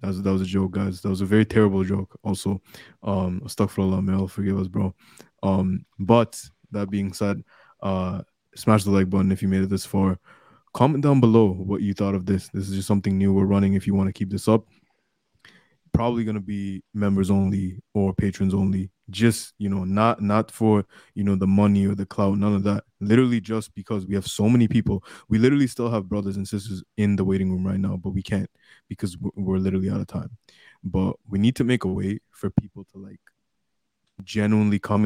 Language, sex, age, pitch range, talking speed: English, male, 20-39, 95-105 Hz, 215 wpm